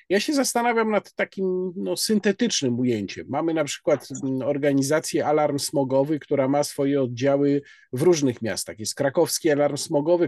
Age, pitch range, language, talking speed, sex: 50-69, 135-180 Hz, Polish, 140 wpm, male